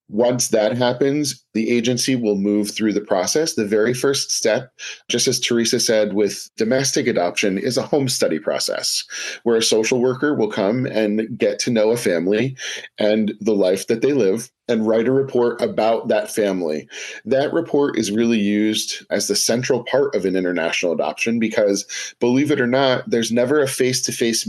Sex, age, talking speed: male, 40-59, 180 wpm